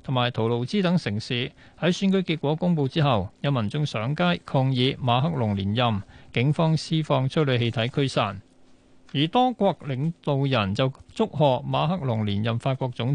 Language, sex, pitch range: Chinese, male, 120-160 Hz